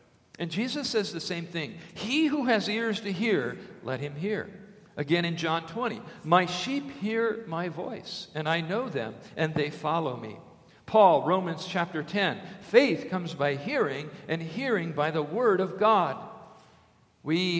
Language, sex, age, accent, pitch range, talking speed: English, male, 50-69, American, 140-190 Hz, 165 wpm